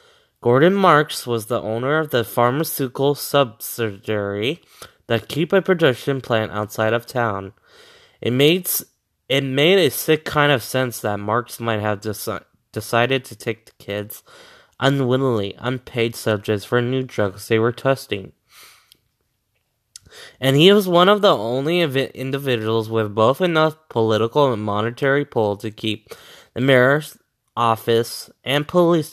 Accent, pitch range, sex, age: American, 110-140 Hz, male, 20-39